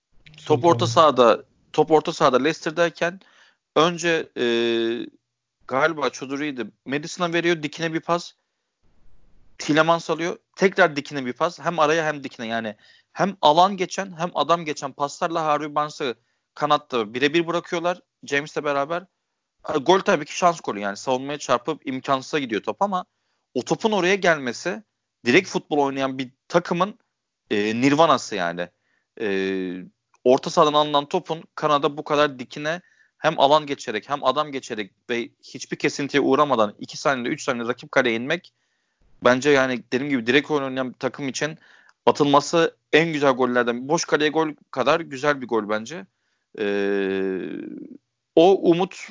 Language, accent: Turkish, native